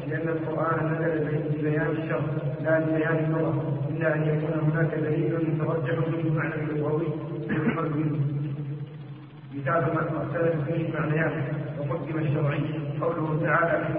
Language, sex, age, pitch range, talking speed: Arabic, male, 40-59, 155-165 Hz, 130 wpm